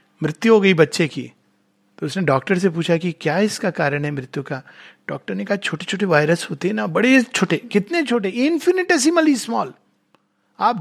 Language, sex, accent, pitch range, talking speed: Hindi, male, native, 185-275 Hz, 185 wpm